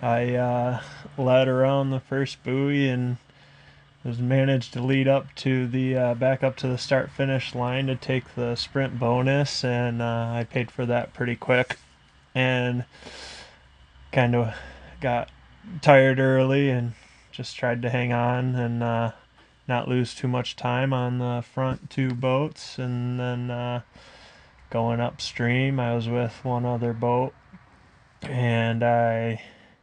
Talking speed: 145 wpm